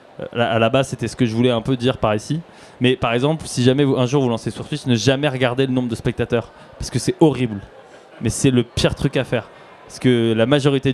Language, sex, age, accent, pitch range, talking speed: French, male, 20-39, French, 120-150 Hz, 260 wpm